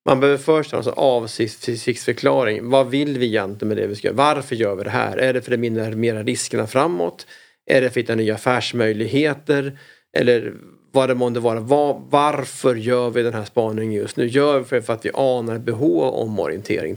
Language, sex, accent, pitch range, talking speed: Swedish, male, Norwegian, 115-135 Hz, 200 wpm